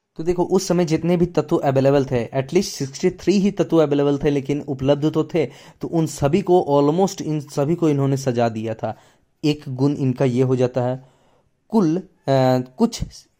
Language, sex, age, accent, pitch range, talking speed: Hindi, male, 20-39, native, 130-165 Hz, 190 wpm